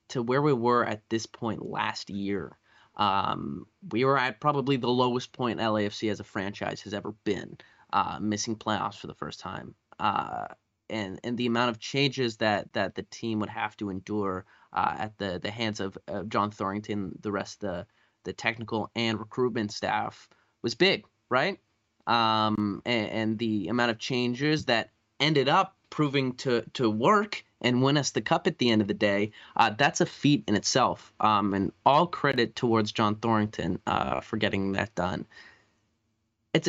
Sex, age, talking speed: male, 20-39, 180 wpm